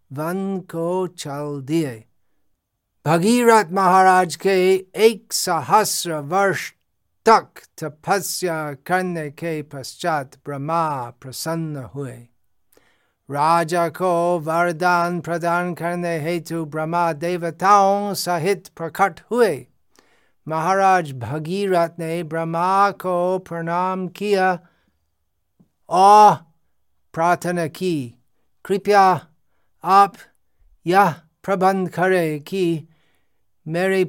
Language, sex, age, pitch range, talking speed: Hindi, male, 50-69, 150-185 Hz, 80 wpm